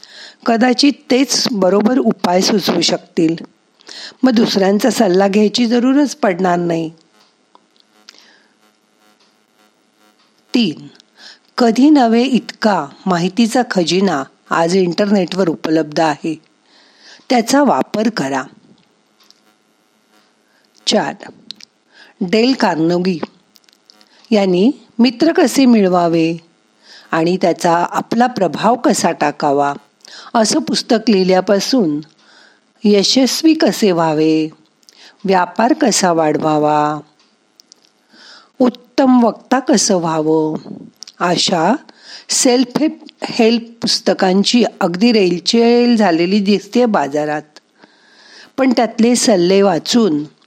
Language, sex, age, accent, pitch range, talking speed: Marathi, female, 50-69, native, 155-235 Hz, 75 wpm